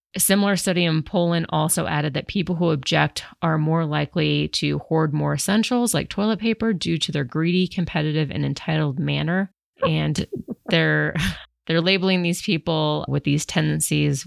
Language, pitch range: English, 140-175 Hz